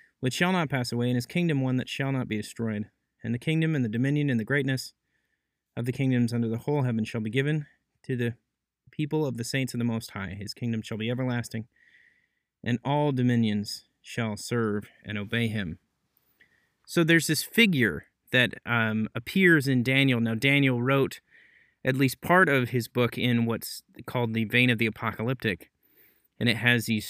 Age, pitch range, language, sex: 30-49, 115-135 Hz, English, male